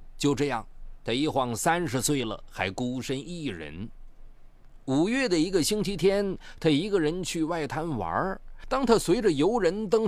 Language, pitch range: Chinese, 120-175 Hz